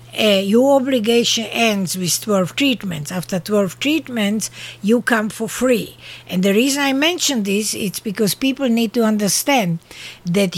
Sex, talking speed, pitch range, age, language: female, 155 wpm, 200-240 Hz, 60-79, English